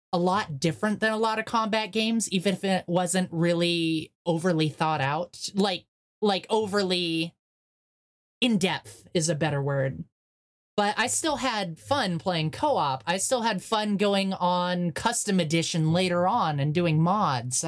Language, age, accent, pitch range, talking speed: English, 20-39, American, 165-205 Hz, 155 wpm